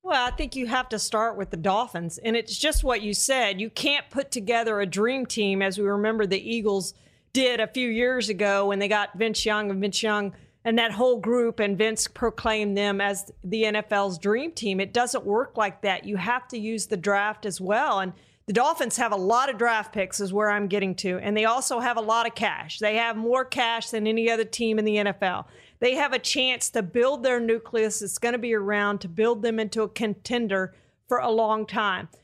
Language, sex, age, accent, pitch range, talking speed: English, female, 40-59, American, 205-240 Hz, 230 wpm